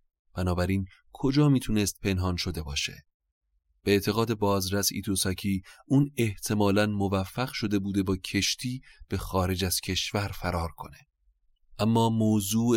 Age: 30-49